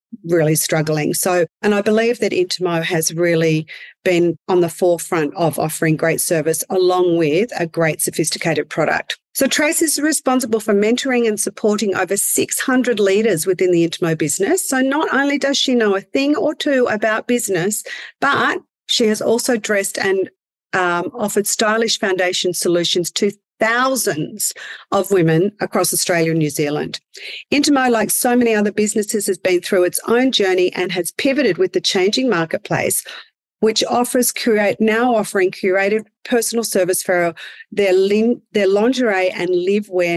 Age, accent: 40-59, Australian